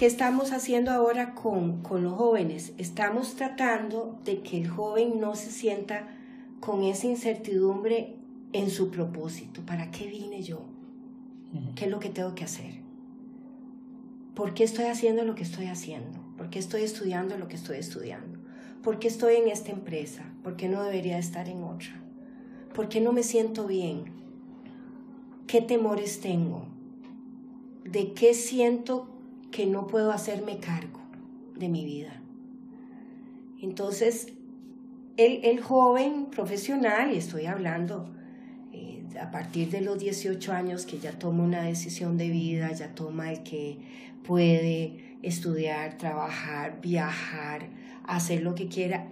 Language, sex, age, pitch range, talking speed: Spanish, female, 40-59, 180-255 Hz, 145 wpm